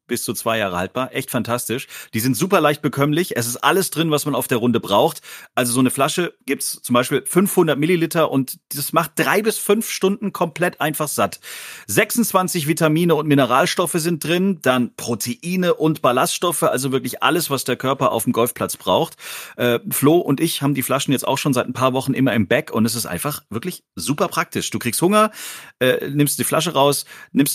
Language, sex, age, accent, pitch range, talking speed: German, male, 40-59, German, 120-180 Hz, 205 wpm